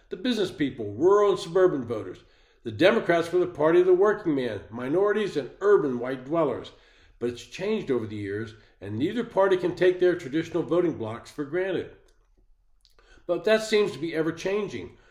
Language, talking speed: English, 175 wpm